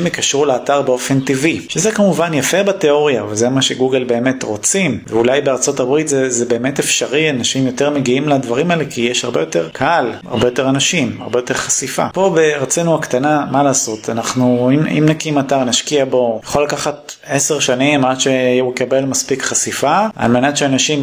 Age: 30-49